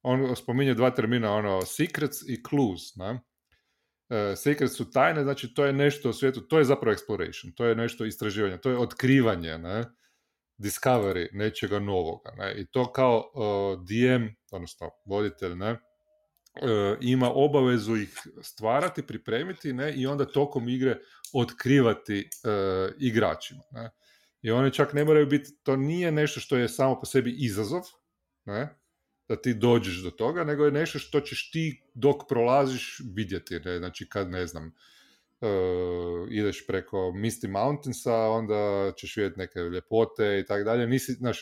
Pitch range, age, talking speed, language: 105-140 Hz, 30-49, 155 wpm, Croatian